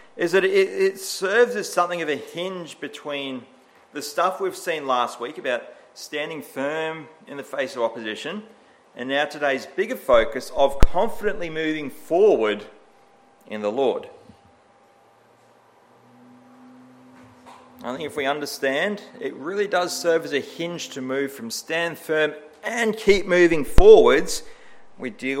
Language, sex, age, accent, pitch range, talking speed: English, male, 40-59, Australian, 135-190 Hz, 140 wpm